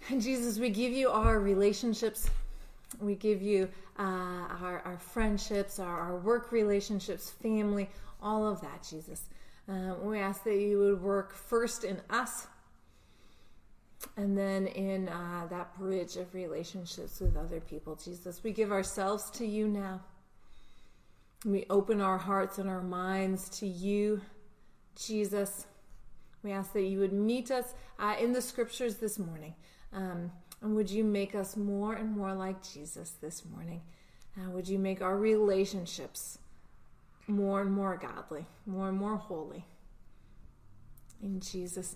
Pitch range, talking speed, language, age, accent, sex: 185-225 Hz, 145 wpm, English, 30-49, American, female